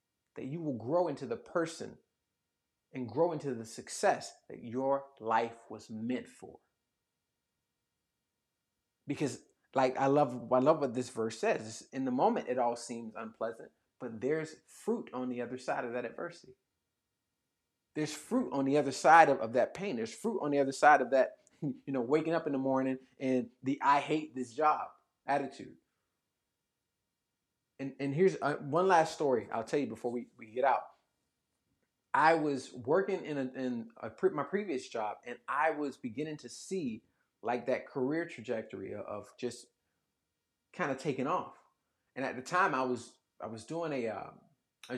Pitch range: 120-155 Hz